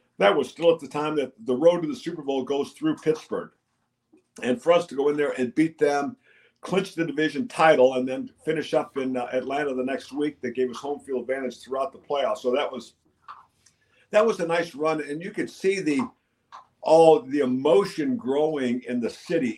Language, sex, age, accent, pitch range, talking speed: English, male, 50-69, American, 125-160 Hz, 210 wpm